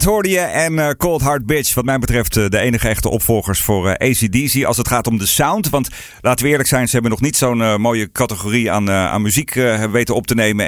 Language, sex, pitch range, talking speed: Dutch, male, 110-145 Hz, 225 wpm